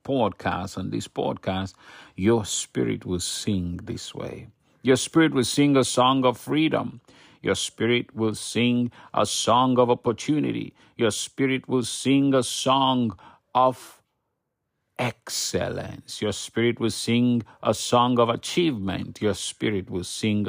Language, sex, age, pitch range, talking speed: English, male, 50-69, 100-125 Hz, 135 wpm